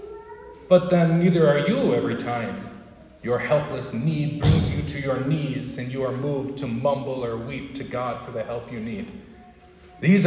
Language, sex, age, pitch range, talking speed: English, male, 40-59, 115-180 Hz, 180 wpm